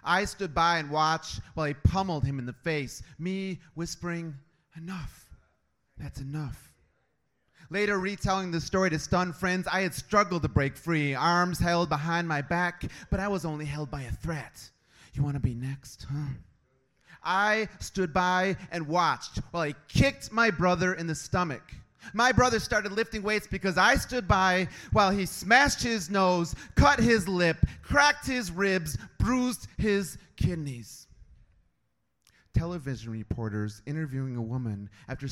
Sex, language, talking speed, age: male, English, 155 wpm, 30-49